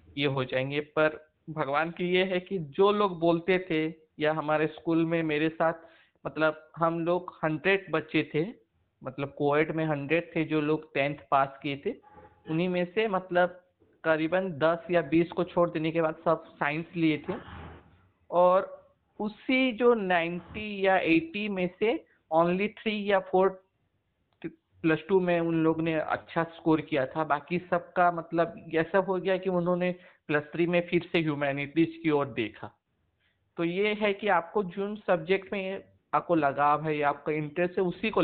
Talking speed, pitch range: 170 wpm, 145-175 Hz